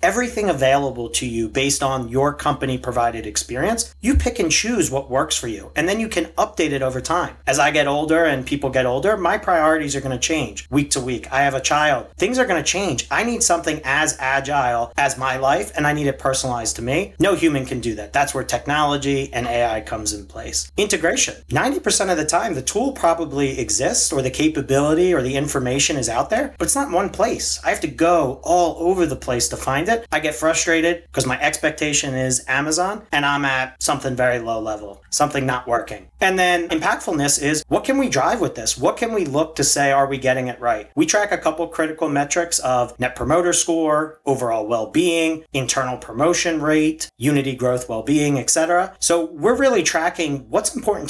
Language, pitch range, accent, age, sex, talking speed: English, 130-165 Hz, American, 40-59, male, 210 wpm